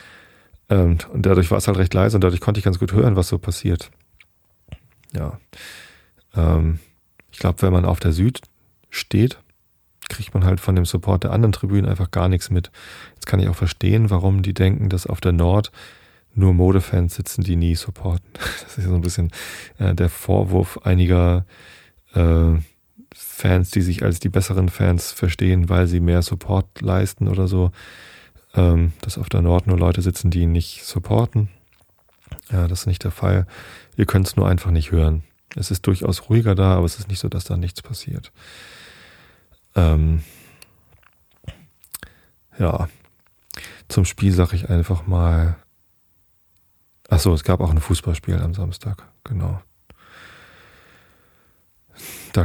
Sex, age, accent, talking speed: male, 30-49, German, 155 wpm